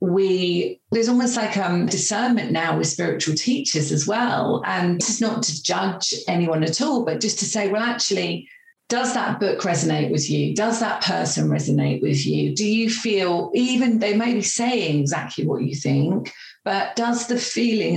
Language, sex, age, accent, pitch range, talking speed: English, female, 40-59, British, 155-225 Hz, 185 wpm